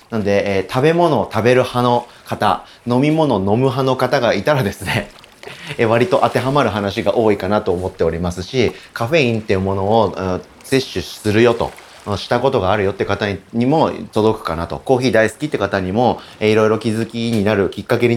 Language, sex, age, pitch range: Japanese, male, 30-49, 100-130 Hz